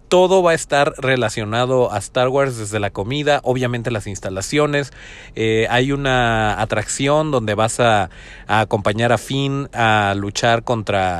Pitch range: 115-160 Hz